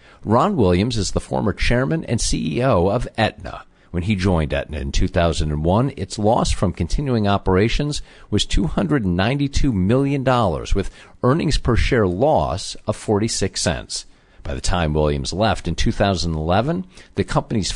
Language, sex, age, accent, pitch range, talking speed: English, male, 50-69, American, 85-120 Hz, 140 wpm